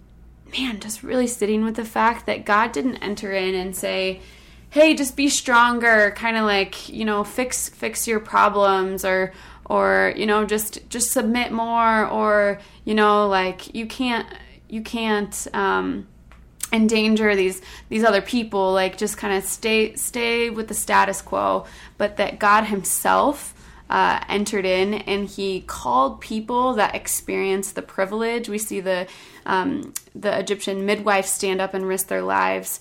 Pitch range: 190-215 Hz